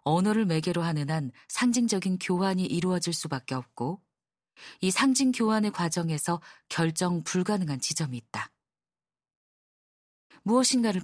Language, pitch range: Korean, 155-210 Hz